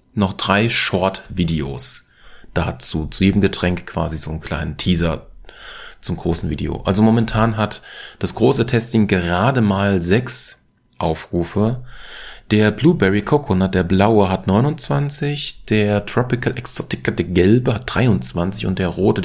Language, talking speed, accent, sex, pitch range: German, 130 wpm, German, male, 90-115 Hz